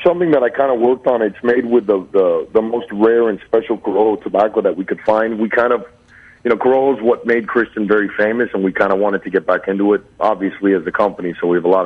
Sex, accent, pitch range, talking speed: male, American, 95-115 Hz, 275 wpm